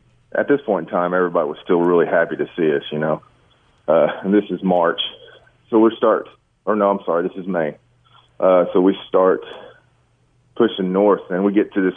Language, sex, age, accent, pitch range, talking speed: English, male, 30-49, American, 90-115 Hz, 205 wpm